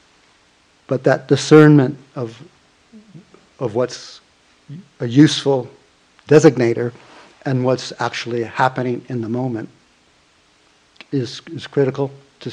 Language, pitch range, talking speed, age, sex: English, 120-150 Hz, 95 wpm, 50-69, male